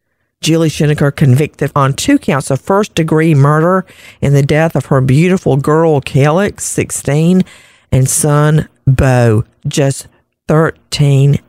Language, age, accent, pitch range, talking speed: English, 50-69, American, 135-175 Hz, 120 wpm